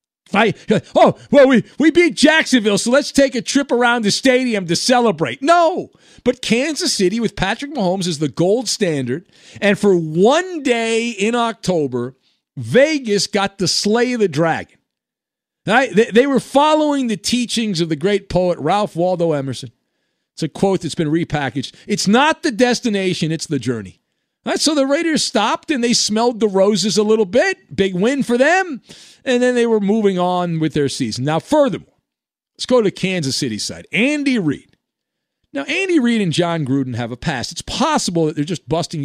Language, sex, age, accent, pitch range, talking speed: English, male, 40-59, American, 155-245 Hz, 185 wpm